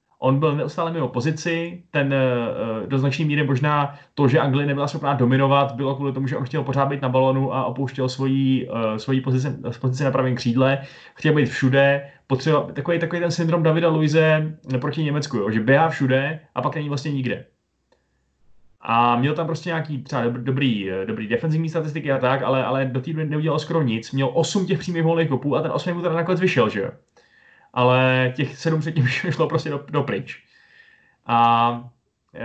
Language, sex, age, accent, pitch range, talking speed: Czech, male, 20-39, native, 130-155 Hz, 180 wpm